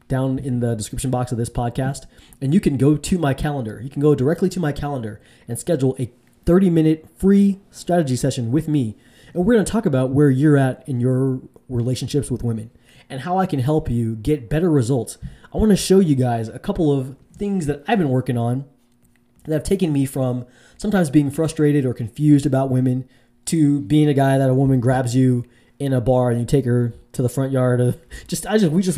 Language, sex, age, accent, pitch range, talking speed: English, male, 20-39, American, 125-155 Hz, 220 wpm